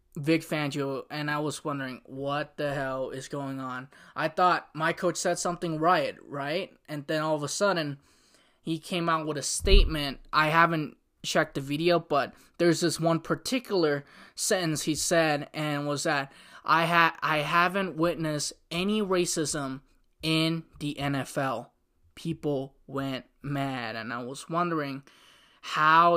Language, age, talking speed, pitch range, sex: English, 20-39, 150 wpm, 145-175 Hz, male